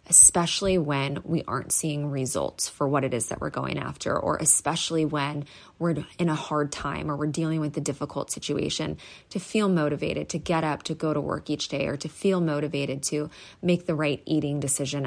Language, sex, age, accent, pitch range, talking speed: English, female, 20-39, American, 140-165 Hz, 205 wpm